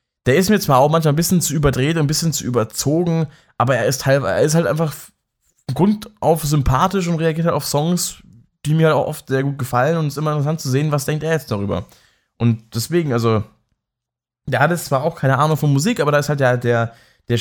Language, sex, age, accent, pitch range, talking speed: German, male, 20-39, German, 120-150 Hz, 240 wpm